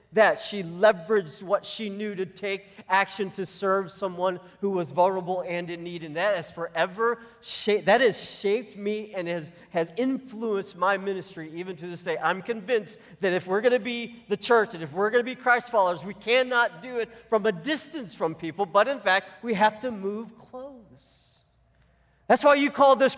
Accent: American